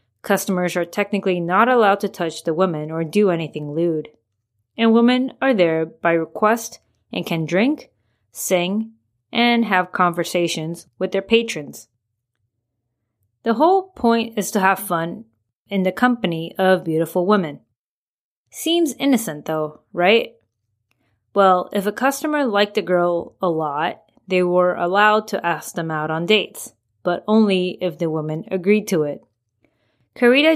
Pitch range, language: 150-205 Hz, English